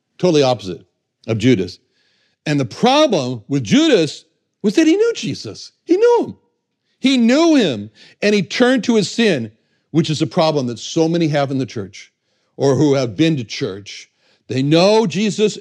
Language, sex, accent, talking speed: English, male, American, 175 wpm